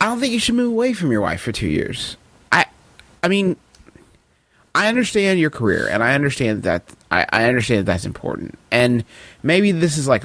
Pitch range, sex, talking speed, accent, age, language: 105-155 Hz, male, 205 wpm, American, 30-49, English